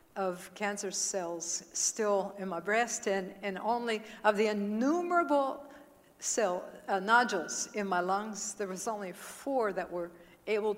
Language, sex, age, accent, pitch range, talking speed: English, female, 60-79, American, 205-280 Hz, 145 wpm